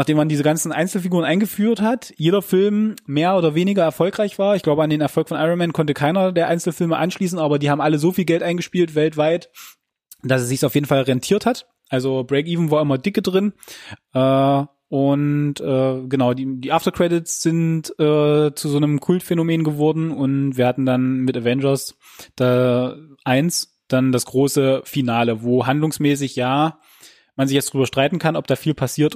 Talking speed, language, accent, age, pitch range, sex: 175 wpm, German, German, 20-39, 130-165 Hz, male